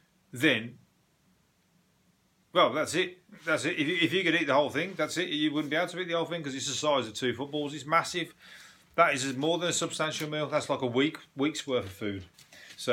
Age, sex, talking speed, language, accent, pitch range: 30-49, male, 230 wpm, English, British, 120-155 Hz